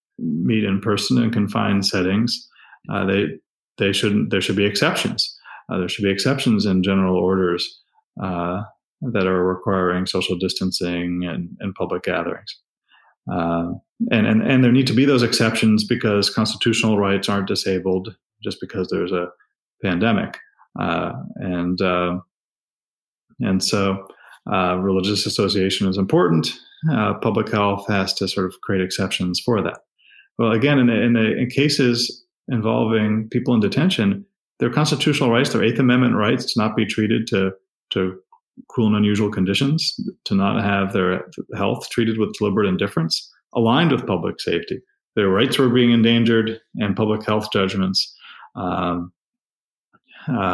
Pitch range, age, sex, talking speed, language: 95-115 Hz, 30-49, male, 145 wpm, English